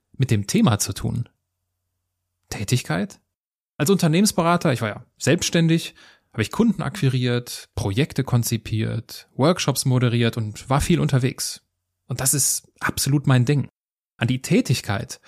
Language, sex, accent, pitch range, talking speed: German, male, German, 115-160 Hz, 130 wpm